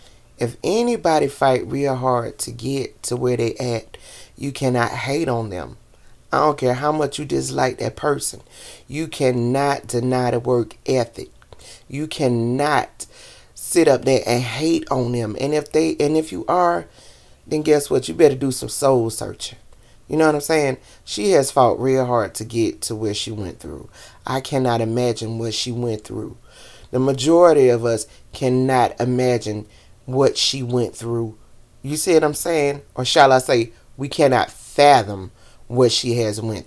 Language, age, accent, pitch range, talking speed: English, 30-49, American, 120-170 Hz, 175 wpm